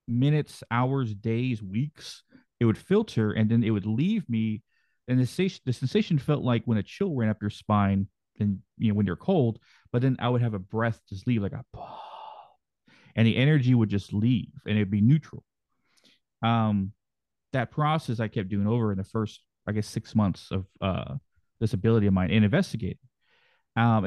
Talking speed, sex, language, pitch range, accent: 190 wpm, male, English, 105-125 Hz, American